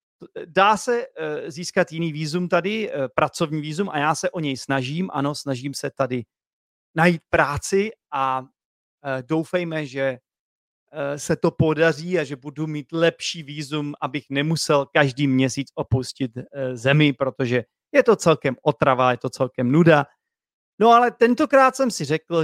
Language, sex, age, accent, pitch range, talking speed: Czech, male, 40-59, native, 135-170 Hz, 140 wpm